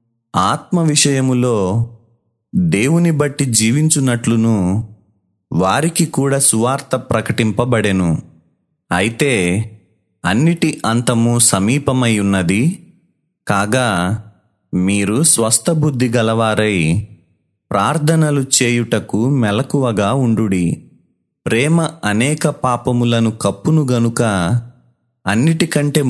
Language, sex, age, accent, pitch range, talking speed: Telugu, male, 30-49, native, 105-140 Hz, 60 wpm